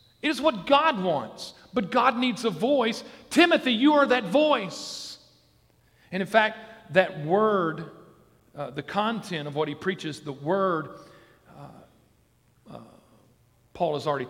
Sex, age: male, 40-59